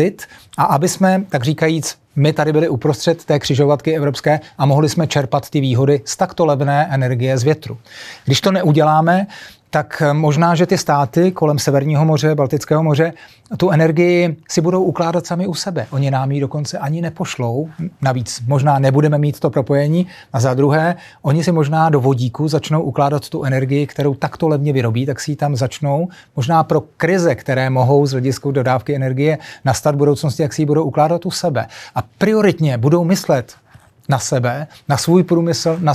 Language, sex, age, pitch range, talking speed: Czech, male, 30-49, 135-160 Hz, 180 wpm